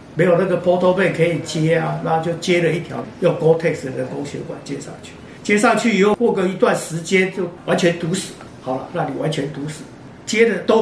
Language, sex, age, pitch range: Chinese, male, 50-69, 155-185 Hz